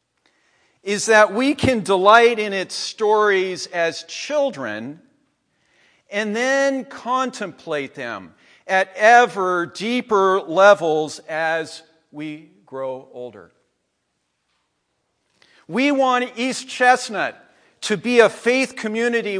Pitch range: 205-270 Hz